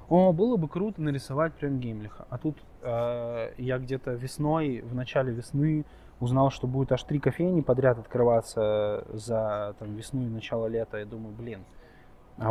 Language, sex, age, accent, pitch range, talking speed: Russian, male, 20-39, native, 110-140 Hz, 165 wpm